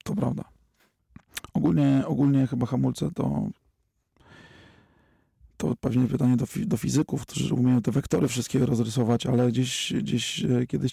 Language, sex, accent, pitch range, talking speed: Polish, male, native, 125-140 Hz, 125 wpm